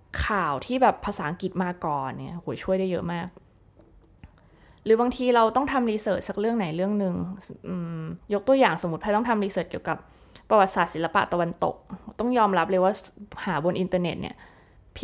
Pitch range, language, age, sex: 175-220 Hz, Thai, 20-39, female